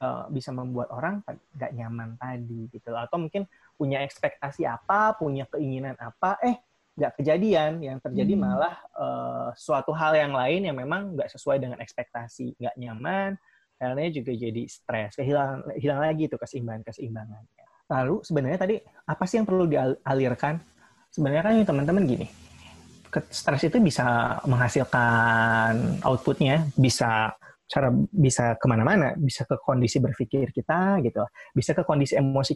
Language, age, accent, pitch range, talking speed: Indonesian, 20-39, native, 125-155 Hz, 140 wpm